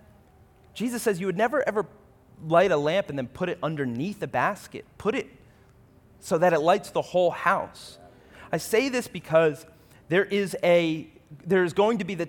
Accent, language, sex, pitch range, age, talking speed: American, English, male, 145-210 Hz, 30-49, 185 wpm